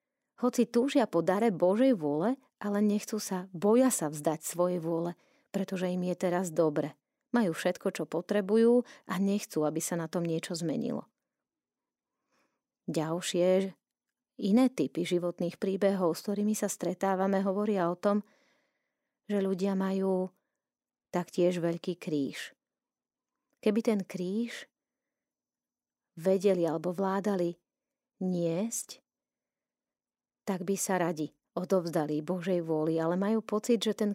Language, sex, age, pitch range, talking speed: Slovak, female, 30-49, 180-240 Hz, 120 wpm